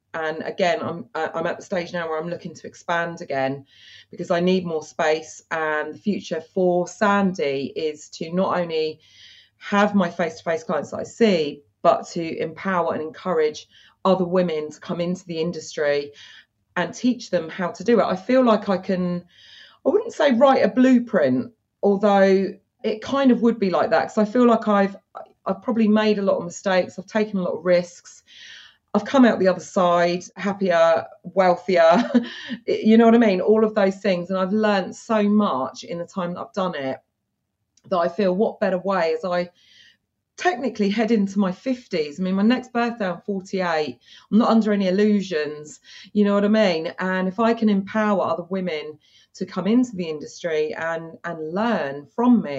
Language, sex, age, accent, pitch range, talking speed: English, female, 30-49, British, 170-215 Hz, 195 wpm